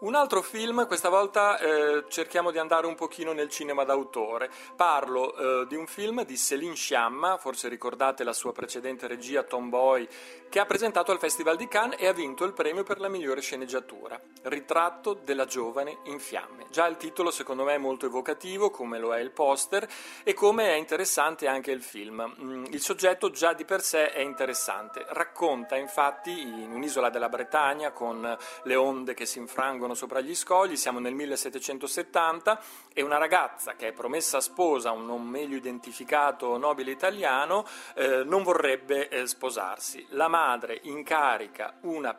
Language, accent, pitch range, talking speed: Italian, native, 130-185 Hz, 170 wpm